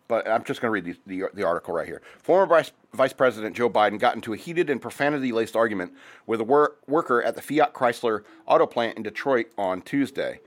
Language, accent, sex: English, American, male